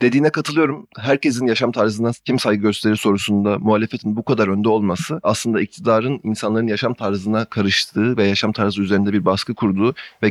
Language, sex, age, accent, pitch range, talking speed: Turkish, male, 30-49, native, 100-120 Hz, 165 wpm